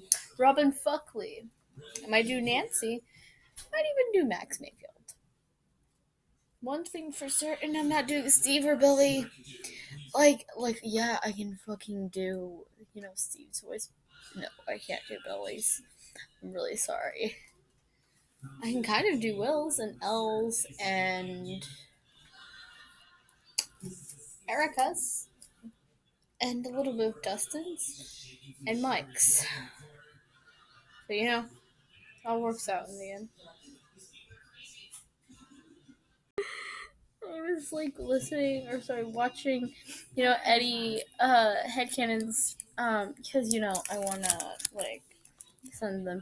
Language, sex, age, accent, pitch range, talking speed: English, female, 10-29, American, 200-280 Hz, 120 wpm